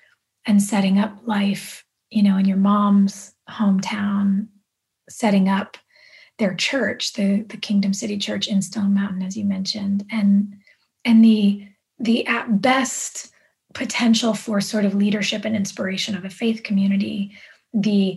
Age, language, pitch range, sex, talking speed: 20-39, English, 200-225 Hz, female, 140 wpm